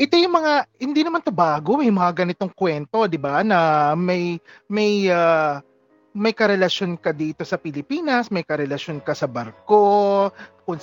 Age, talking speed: 30-49, 165 wpm